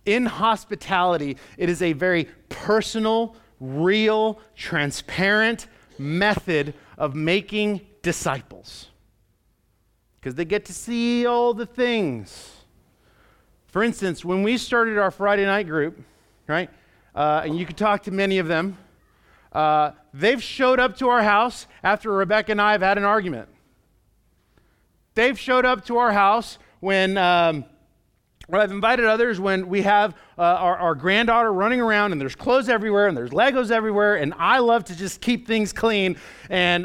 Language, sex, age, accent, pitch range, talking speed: English, male, 40-59, American, 170-225 Hz, 150 wpm